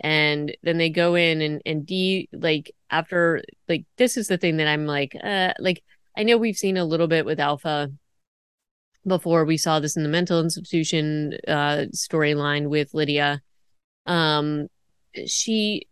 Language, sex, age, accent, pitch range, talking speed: English, female, 30-49, American, 150-180 Hz, 165 wpm